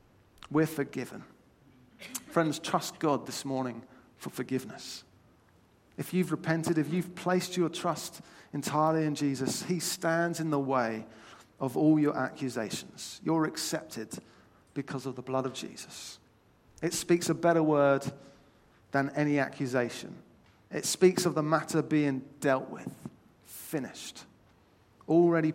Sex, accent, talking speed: male, British, 130 wpm